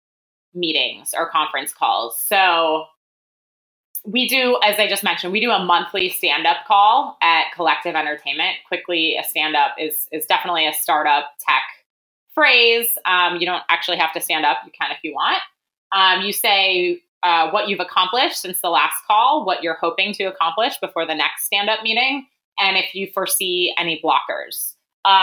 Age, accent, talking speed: 20-39, American, 170 wpm